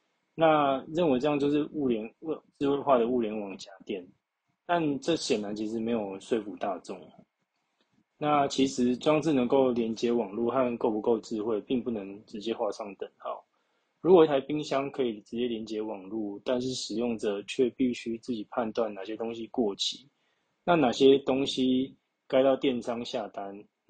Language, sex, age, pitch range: Chinese, male, 20-39, 110-135 Hz